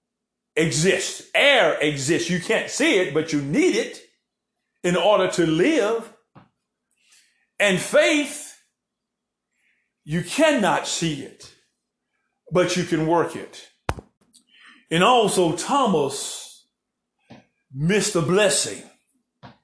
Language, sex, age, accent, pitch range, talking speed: English, male, 50-69, American, 170-250 Hz, 100 wpm